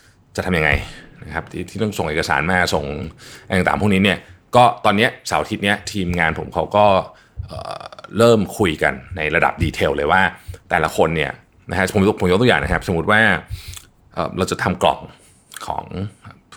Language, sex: Thai, male